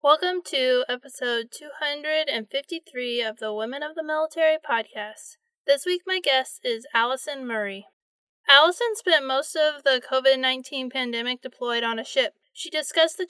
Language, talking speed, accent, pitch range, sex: English, 145 wpm, American, 240-300 Hz, female